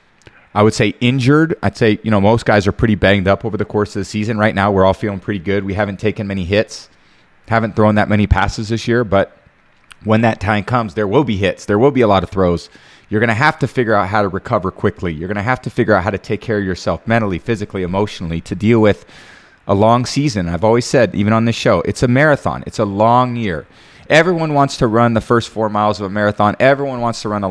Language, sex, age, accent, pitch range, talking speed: English, male, 30-49, American, 100-125 Hz, 255 wpm